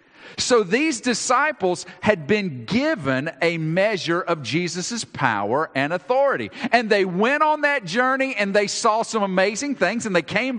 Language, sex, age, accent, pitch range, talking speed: English, male, 50-69, American, 165-235 Hz, 160 wpm